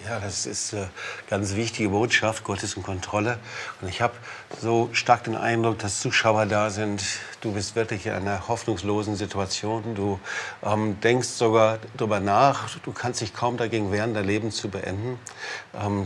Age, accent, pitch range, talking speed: 50-69, German, 105-120 Hz, 170 wpm